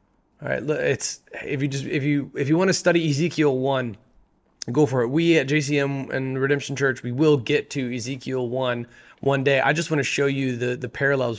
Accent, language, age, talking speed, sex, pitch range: American, English, 20-39, 215 wpm, male, 125-145 Hz